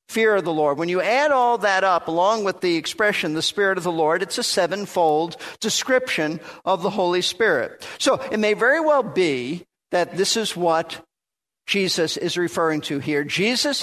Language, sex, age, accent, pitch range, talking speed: English, male, 50-69, American, 170-215 Hz, 185 wpm